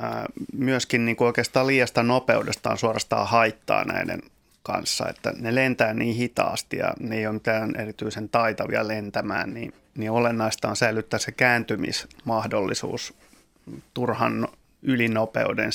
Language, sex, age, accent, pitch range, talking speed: Finnish, male, 30-49, native, 110-125 Hz, 120 wpm